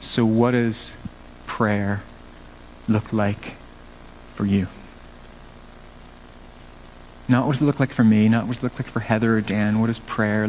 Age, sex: 40-59, male